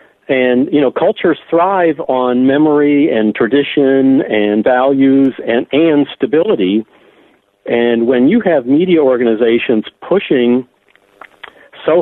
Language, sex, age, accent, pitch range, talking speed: English, male, 50-69, American, 120-150 Hz, 110 wpm